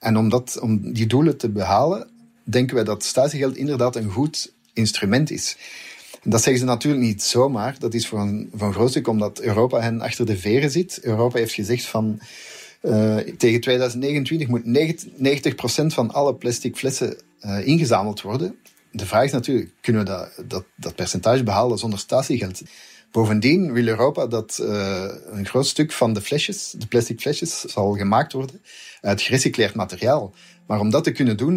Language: Dutch